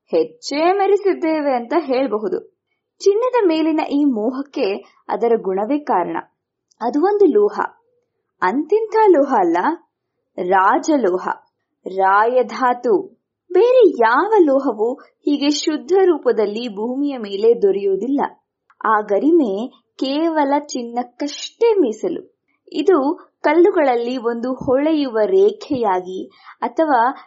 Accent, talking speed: native, 85 wpm